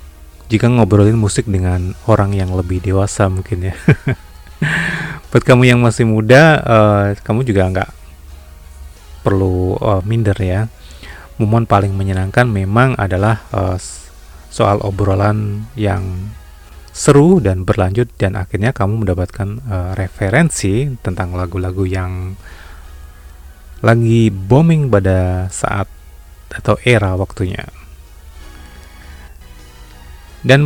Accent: native